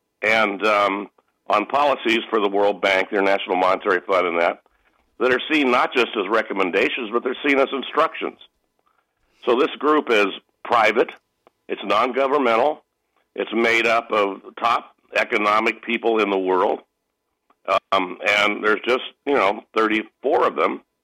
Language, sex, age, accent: English, male, 60-79, American